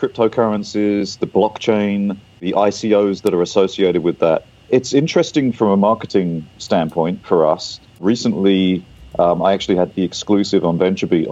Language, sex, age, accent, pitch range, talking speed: English, male, 40-59, British, 85-100 Hz, 145 wpm